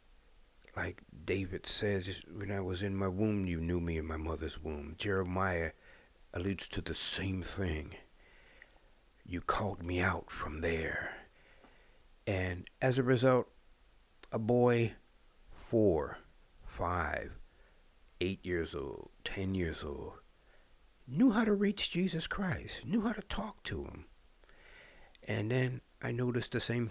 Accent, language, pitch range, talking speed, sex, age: American, English, 85-130 Hz, 135 wpm, male, 60-79